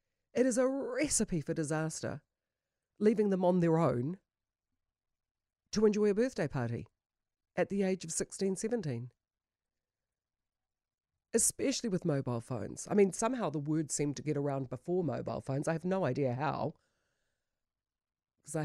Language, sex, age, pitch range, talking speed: English, female, 40-59, 120-195 Hz, 140 wpm